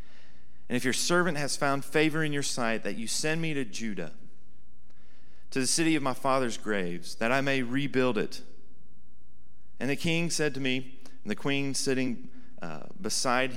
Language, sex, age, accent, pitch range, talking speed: English, male, 40-59, American, 120-155 Hz, 175 wpm